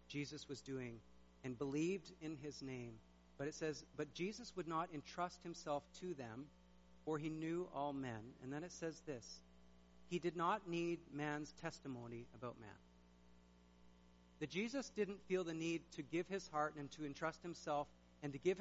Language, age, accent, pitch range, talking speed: English, 50-69, American, 120-170 Hz, 175 wpm